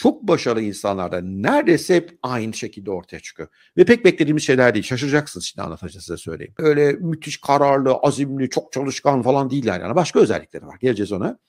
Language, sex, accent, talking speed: Turkish, male, native, 170 wpm